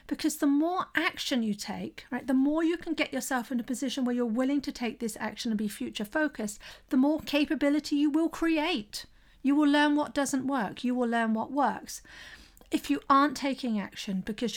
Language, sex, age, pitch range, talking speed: English, female, 40-59, 215-265 Hz, 205 wpm